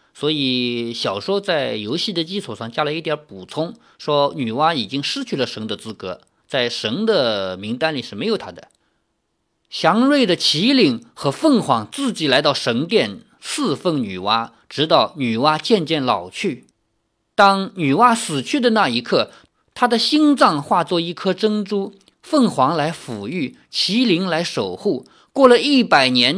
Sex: male